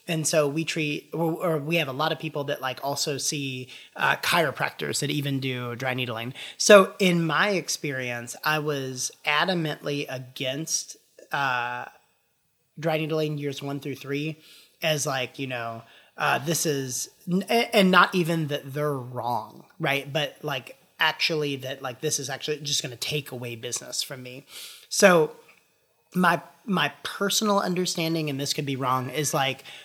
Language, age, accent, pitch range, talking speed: English, 30-49, American, 135-165 Hz, 160 wpm